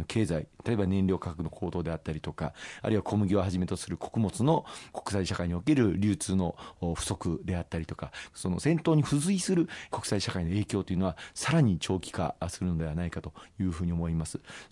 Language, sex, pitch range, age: Japanese, male, 90-110 Hz, 40-59